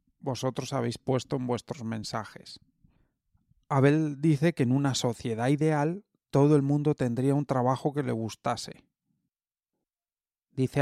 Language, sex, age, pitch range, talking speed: Spanish, male, 30-49, 125-155 Hz, 130 wpm